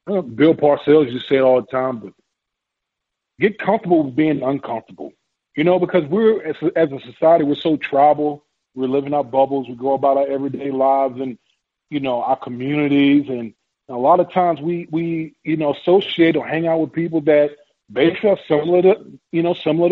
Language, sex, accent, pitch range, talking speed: English, male, American, 135-175 Hz, 190 wpm